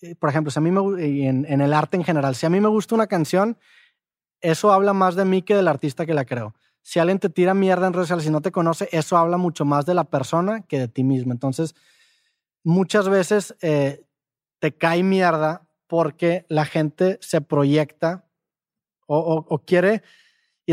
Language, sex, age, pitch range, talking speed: Spanish, male, 20-39, 145-185 Hz, 205 wpm